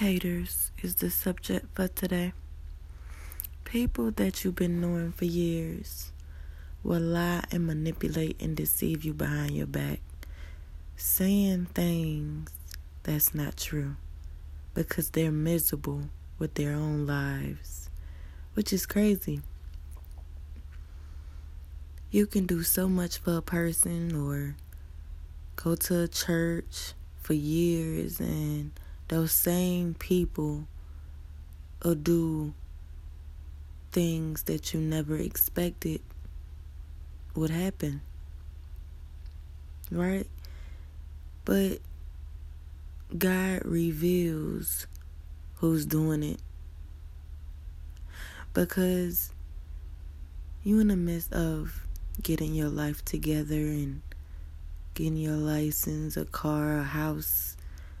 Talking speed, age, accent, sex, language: 95 wpm, 20-39, American, female, English